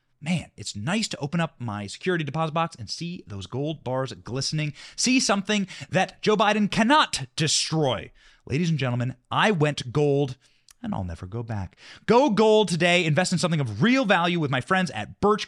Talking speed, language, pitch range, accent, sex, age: 185 wpm, English, 150-210 Hz, American, male, 30-49